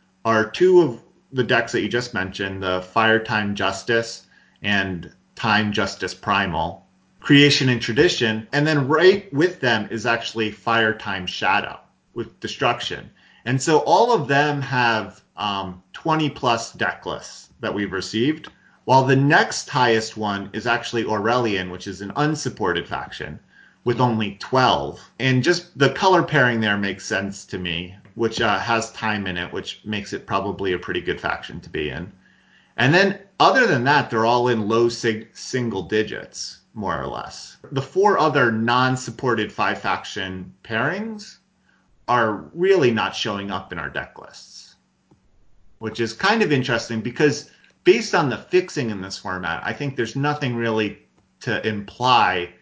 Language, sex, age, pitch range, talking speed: English, male, 30-49, 100-135 Hz, 160 wpm